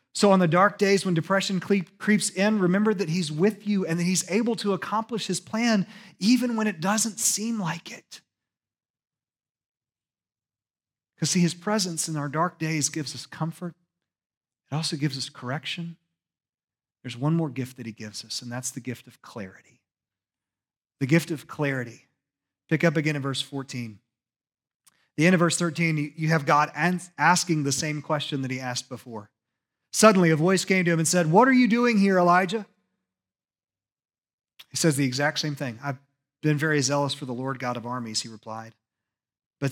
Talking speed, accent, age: 180 wpm, American, 30-49